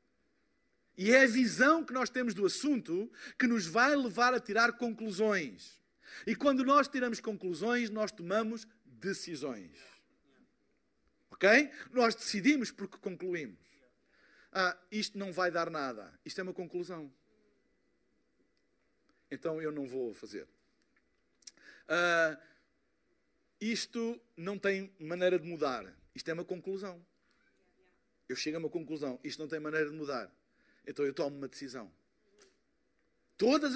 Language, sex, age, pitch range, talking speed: Portuguese, male, 50-69, 165-225 Hz, 130 wpm